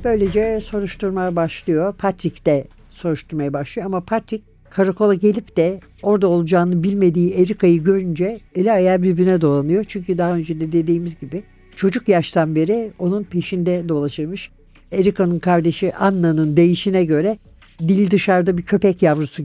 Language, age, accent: Turkish, 60-79, native